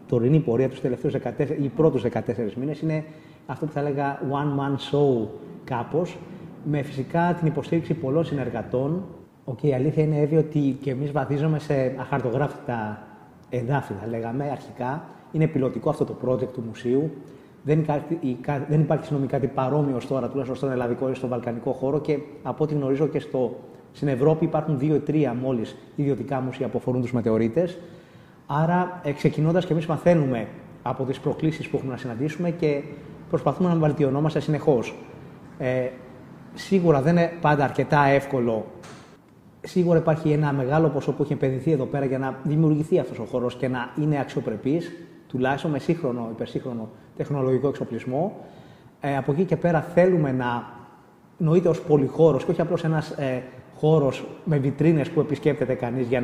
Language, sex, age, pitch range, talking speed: Greek, male, 30-49, 130-155 Hz, 155 wpm